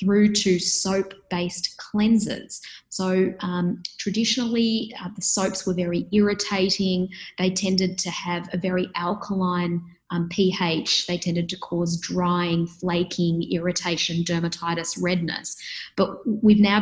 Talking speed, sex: 120 wpm, female